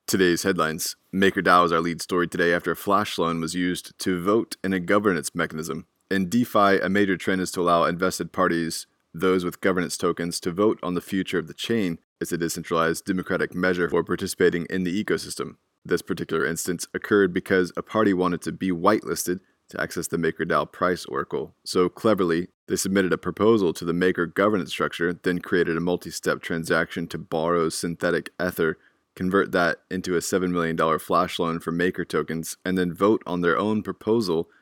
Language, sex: English, male